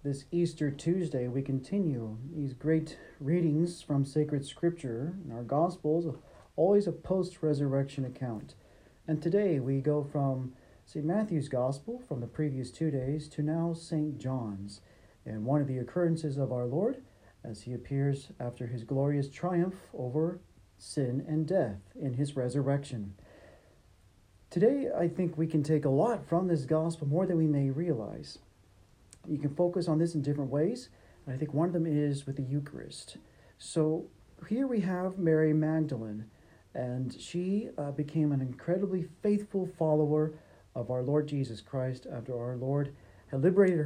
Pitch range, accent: 130-170 Hz, American